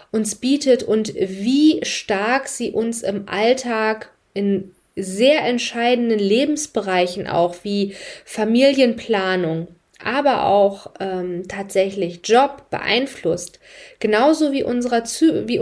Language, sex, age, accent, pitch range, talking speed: German, female, 20-39, German, 195-255 Hz, 100 wpm